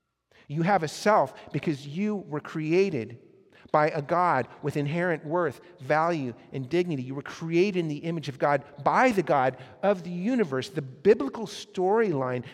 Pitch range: 135-185 Hz